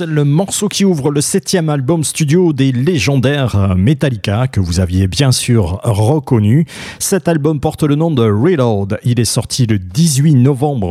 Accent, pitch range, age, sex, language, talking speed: French, 110-170 Hz, 40-59, male, French, 165 wpm